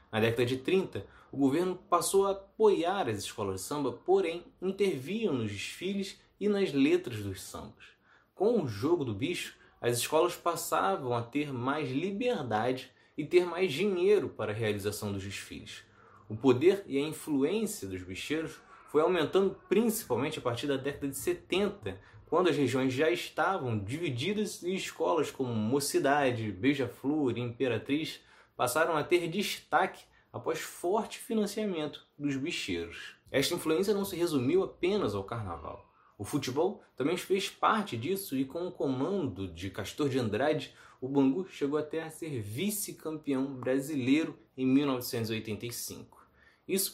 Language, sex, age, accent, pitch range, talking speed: Portuguese, male, 20-39, Brazilian, 120-180 Hz, 145 wpm